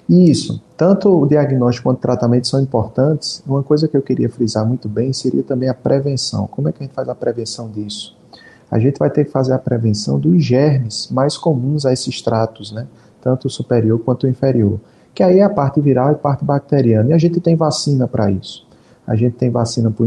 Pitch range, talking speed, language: 115-135 Hz, 220 wpm, Portuguese